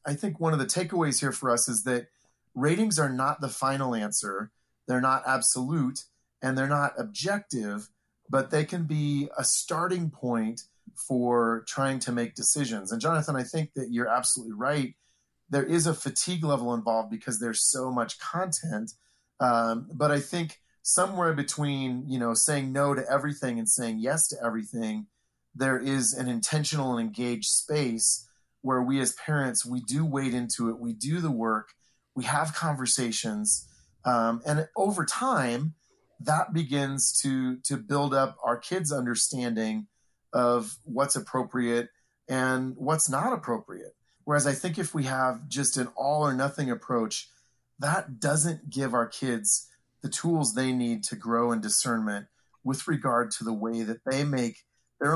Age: 30-49